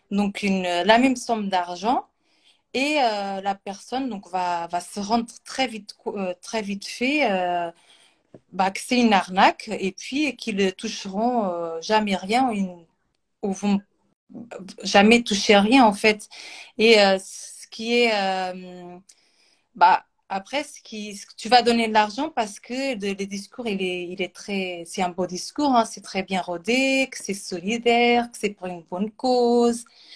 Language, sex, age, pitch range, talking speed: French, female, 30-49, 185-240 Hz, 175 wpm